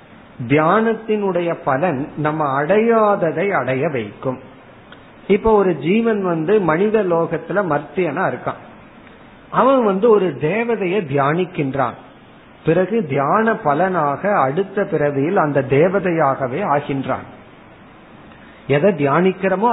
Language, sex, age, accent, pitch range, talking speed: Tamil, male, 50-69, native, 145-205 Hz, 90 wpm